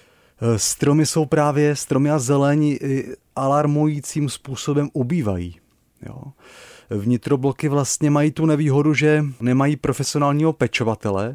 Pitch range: 115-140 Hz